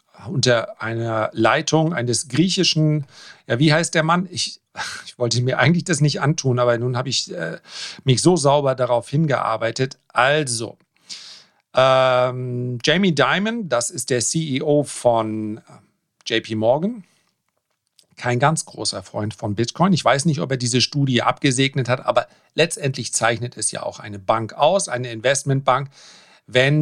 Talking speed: 150 wpm